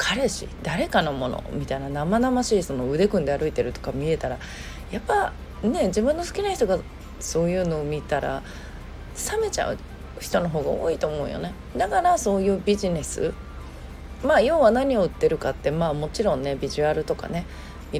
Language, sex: Japanese, female